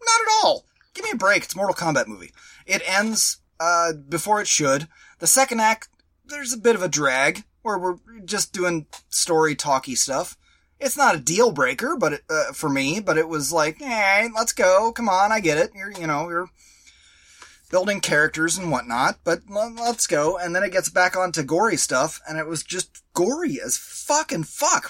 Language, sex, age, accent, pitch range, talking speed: English, male, 20-39, American, 160-235 Hz, 200 wpm